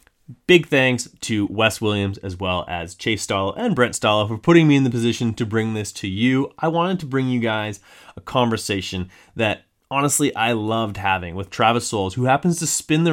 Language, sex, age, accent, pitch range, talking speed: English, male, 30-49, American, 100-125 Hz, 205 wpm